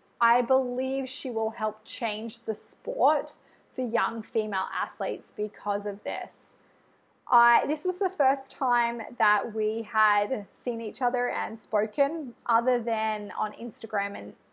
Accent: Australian